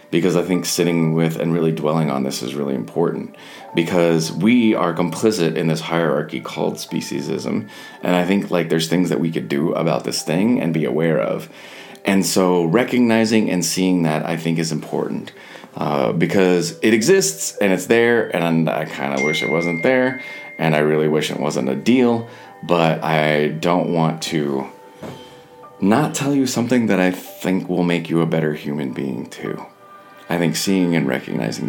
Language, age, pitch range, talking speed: English, 30-49, 80-100 Hz, 185 wpm